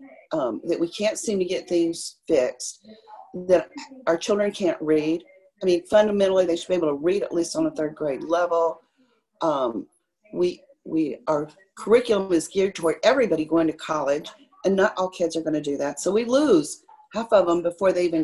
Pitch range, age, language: 170-275 Hz, 40-59, English